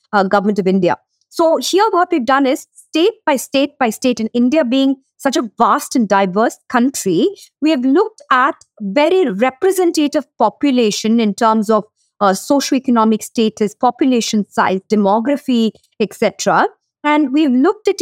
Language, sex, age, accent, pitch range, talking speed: English, female, 50-69, Indian, 220-300 Hz, 155 wpm